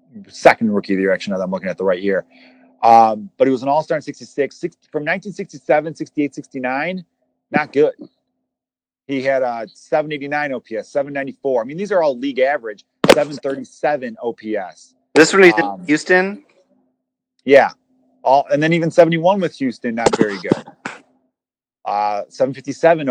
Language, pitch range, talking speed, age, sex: English, 125-165 Hz, 160 wpm, 30-49, male